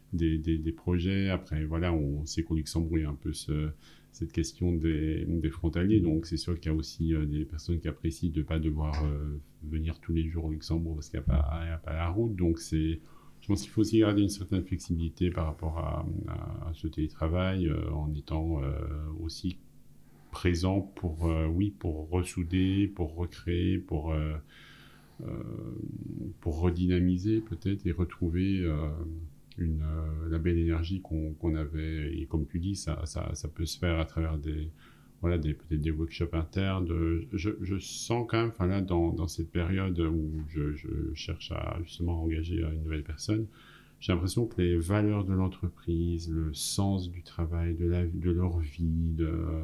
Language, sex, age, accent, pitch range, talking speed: French, male, 40-59, French, 80-90 Hz, 190 wpm